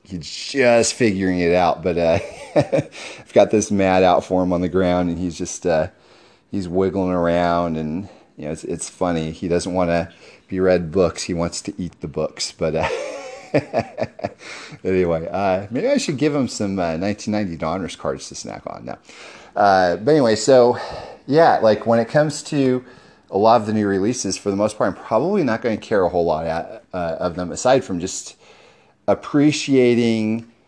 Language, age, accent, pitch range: English, 40-59, American, 90-110 Hz